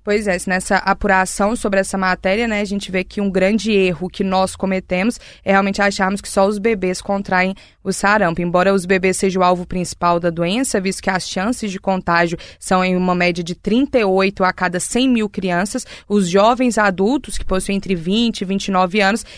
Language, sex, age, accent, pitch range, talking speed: Portuguese, female, 20-39, Brazilian, 190-220 Hz, 200 wpm